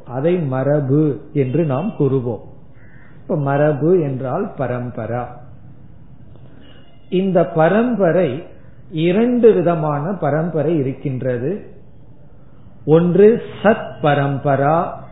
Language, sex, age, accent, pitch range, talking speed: Tamil, male, 50-69, native, 135-170 Hz, 70 wpm